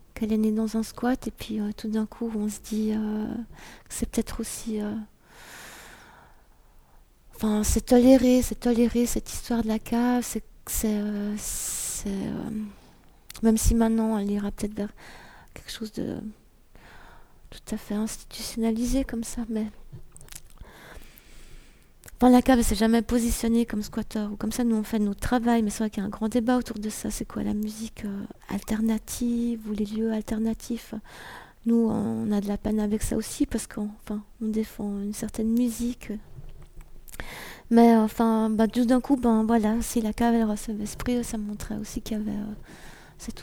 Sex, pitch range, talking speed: female, 215-235 Hz, 180 wpm